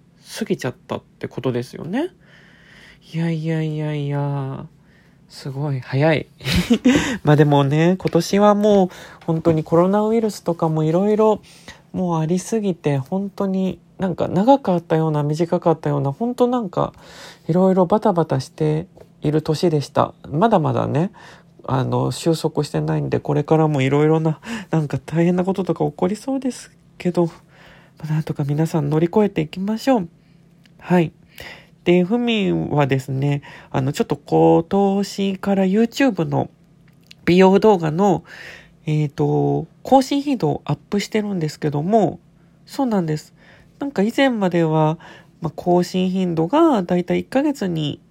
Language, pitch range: Japanese, 155-195 Hz